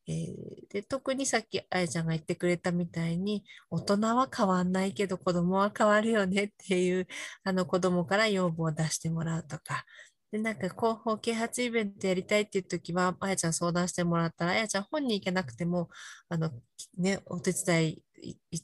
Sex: female